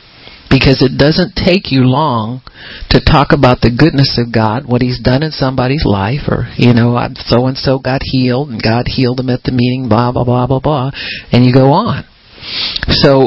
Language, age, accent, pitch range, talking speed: English, 50-69, American, 120-145 Hz, 200 wpm